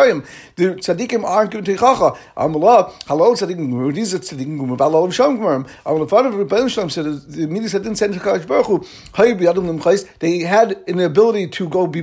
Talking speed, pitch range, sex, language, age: 160 wpm, 165-215 Hz, male, English, 60-79